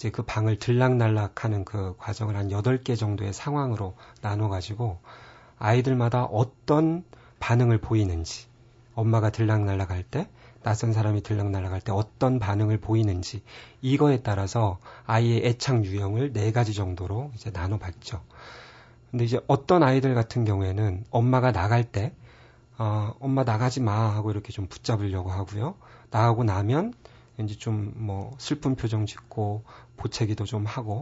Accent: native